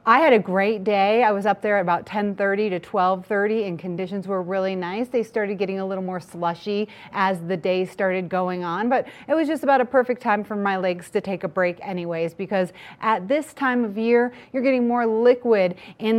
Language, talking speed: English, 220 wpm